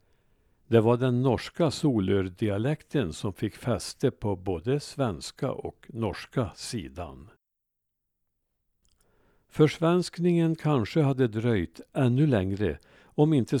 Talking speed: 95 wpm